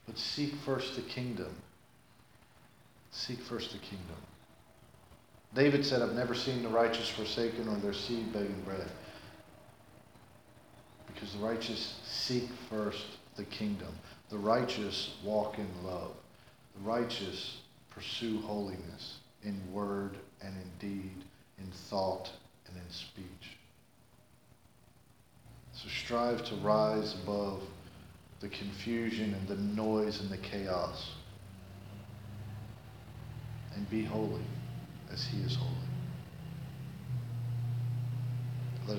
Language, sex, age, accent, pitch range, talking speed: English, male, 40-59, American, 105-125 Hz, 105 wpm